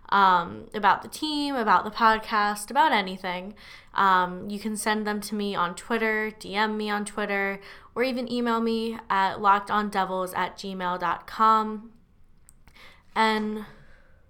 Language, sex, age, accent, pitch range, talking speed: English, female, 10-29, American, 190-230 Hz, 130 wpm